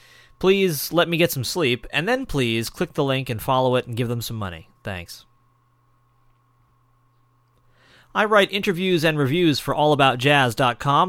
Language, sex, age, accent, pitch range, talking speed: English, male, 30-49, American, 120-150 Hz, 150 wpm